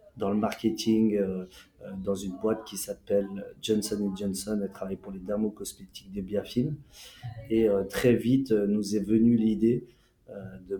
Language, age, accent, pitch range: French, 30-49, French, 100-115 Hz